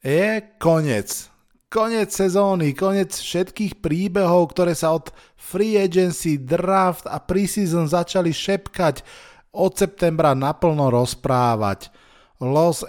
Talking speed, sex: 100 wpm, male